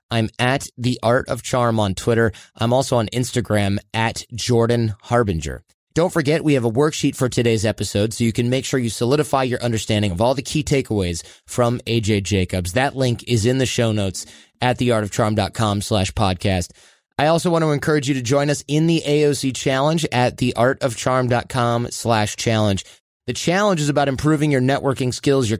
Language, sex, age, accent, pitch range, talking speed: English, male, 30-49, American, 105-140 Hz, 180 wpm